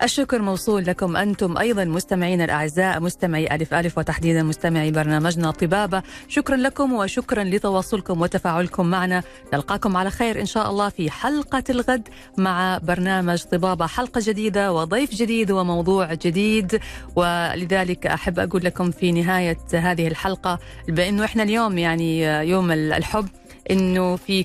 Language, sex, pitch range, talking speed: Arabic, female, 170-210 Hz, 135 wpm